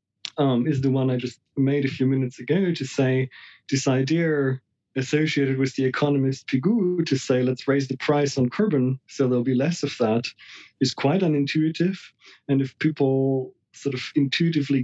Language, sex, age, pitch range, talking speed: English, male, 30-49, 130-145 Hz, 175 wpm